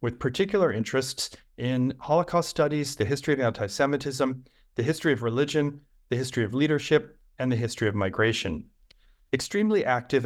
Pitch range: 115-140 Hz